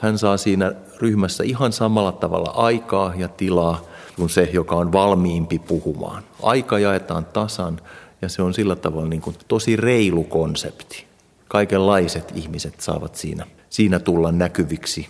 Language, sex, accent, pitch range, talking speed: Finnish, male, native, 85-105 Hz, 145 wpm